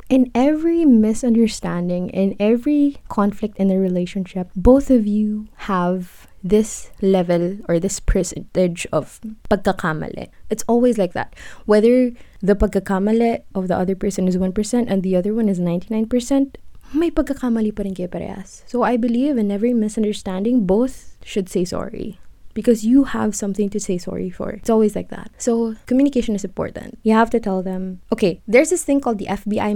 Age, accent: 20-39, native